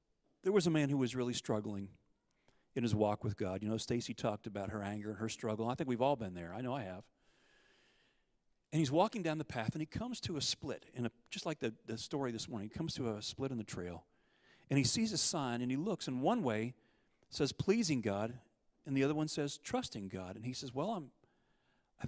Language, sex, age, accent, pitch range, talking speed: English, male, 40-59, American, 115-165 Hz, 240 wpm